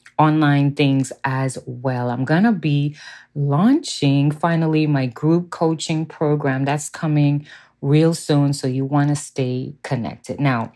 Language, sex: English, female